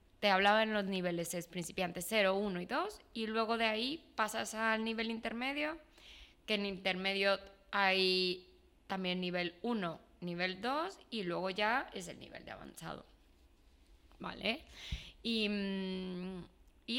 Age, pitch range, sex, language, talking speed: 20-39, 185-240 Hz, female, Spanish, 135 wpm